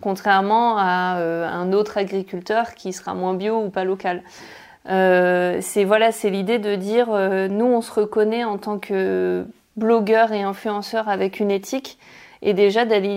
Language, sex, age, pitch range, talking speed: French, female, 30-49, 190-215 Hz, 160 wpm